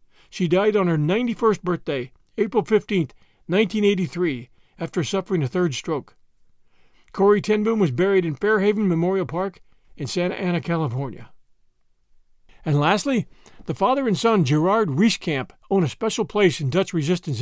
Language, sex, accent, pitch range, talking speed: English, male, American, 160-210 Hz, 140 wpm